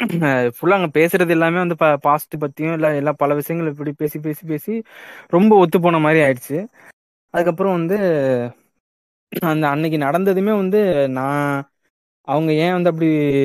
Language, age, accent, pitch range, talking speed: Tamil, 20-39, native, 140-175 Hz, 140 wpm